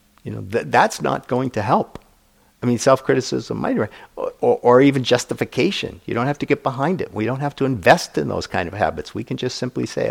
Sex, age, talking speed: male, 50-69, 225 wpm